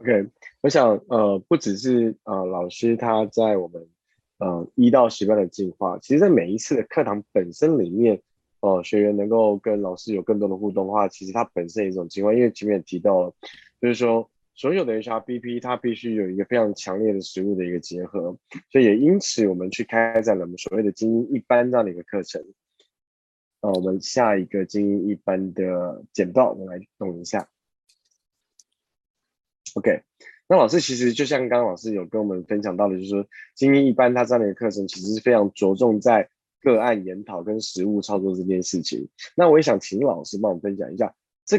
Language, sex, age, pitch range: Chinese, male, 20-39, 95-120 Hz